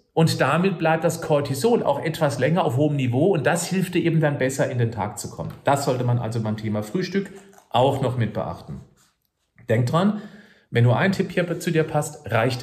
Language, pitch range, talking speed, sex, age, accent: German, 120-160 Hz, 215 wpm, male, 40-59, German